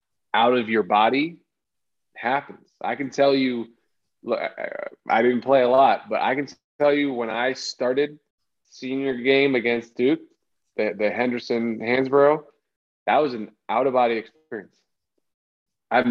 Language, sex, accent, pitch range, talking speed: English, male, American, 110-135 Hz, 135 wpm